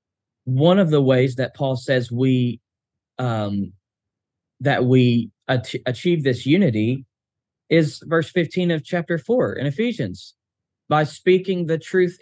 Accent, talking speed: American, 135 wpm